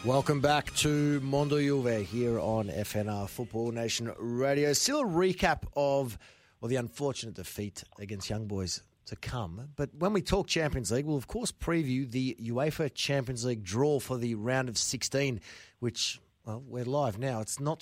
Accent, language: Australian, English